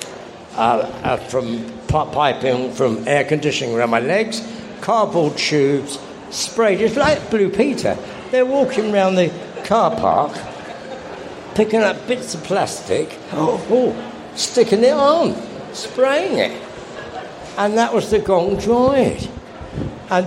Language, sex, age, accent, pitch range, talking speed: English, male, 60-79, British, 165-220 Hz, 125 wpm